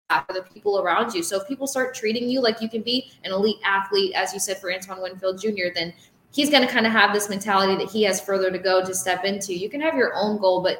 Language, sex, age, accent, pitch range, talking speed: English, female, 20-39, American, 185-225 Hz, 280 wpm